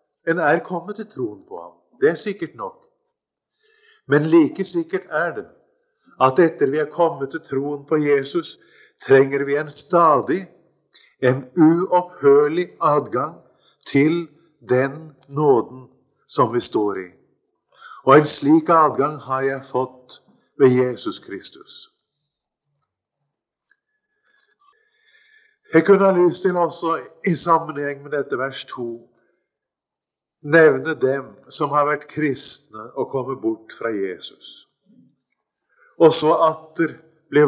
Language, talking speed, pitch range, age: English, 120 wpm, 145-190 Hz, 50-69